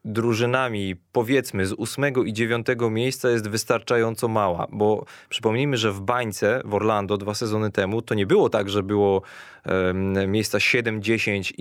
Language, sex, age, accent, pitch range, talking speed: Polish, male, 20-39, native, 110-130 Hz, 150 wpm